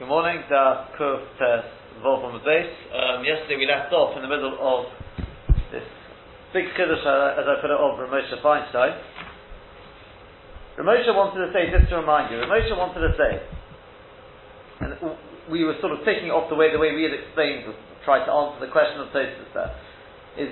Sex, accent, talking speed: male, British, 180 wpm